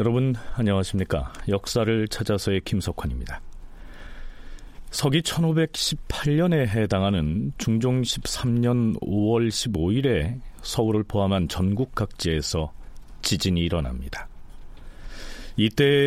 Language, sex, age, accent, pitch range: Korean, male, 40-59, native, 85-125 Hz